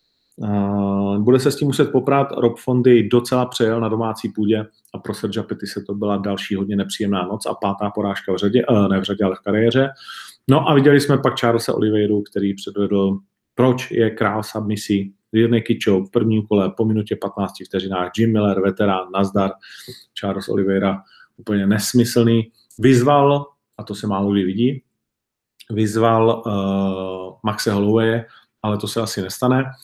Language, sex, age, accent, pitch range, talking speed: Czech, male, 40-59, native, 100-130 Hz, 165 wpm